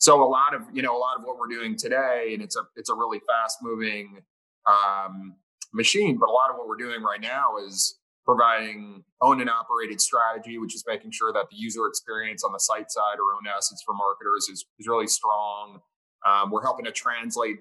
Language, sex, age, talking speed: English, male, 20-39, 220 wpm